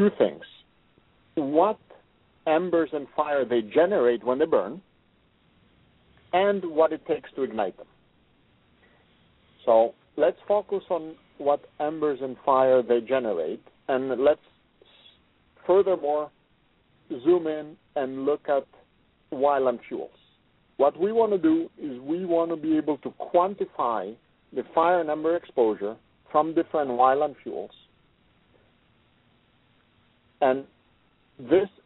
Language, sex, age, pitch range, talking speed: English, male, 50-69, 130-170 Hz, 115 wpm